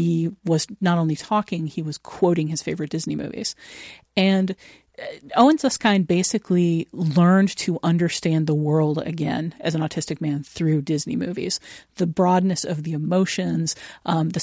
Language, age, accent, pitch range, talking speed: English, 40-59, American, 155-180 Hz, 155 wpm